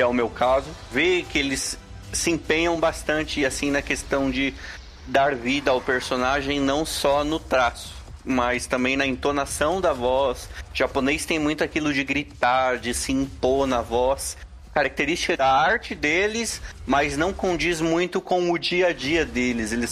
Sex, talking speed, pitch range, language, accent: male, 170 wpm, 130-170 Hz, Portuguese, Brazilian